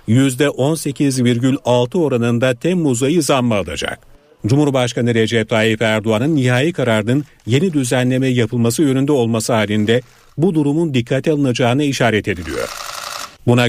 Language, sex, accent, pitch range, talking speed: Turkish, male, native, 115-140 Hz, 110 wpm